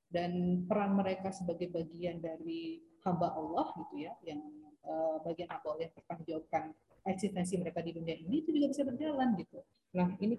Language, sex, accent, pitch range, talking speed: English, female, Indonesian, 170-215 Hz, 160 wpm